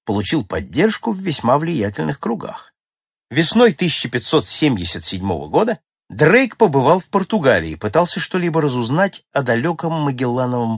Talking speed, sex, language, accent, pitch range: 110 wpm, male, Russian, native, 110-175 Hz